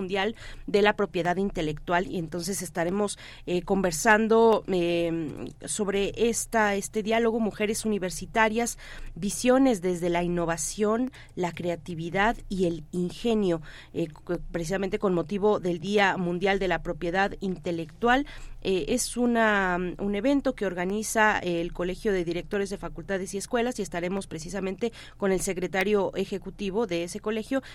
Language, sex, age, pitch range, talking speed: Spanish, female, 30-49, 170-210 Hz, 135 wpm